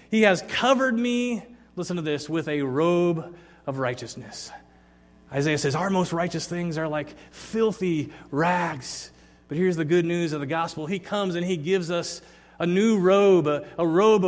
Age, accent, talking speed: 30-49, American, 175 wpm